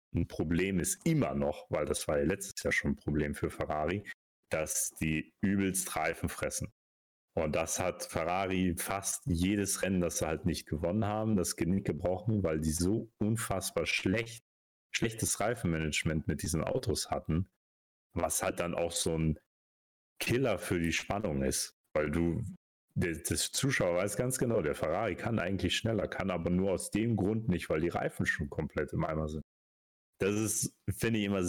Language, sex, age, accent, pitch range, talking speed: German, male, 40-59, German, 80-100 Hz, 175 wpm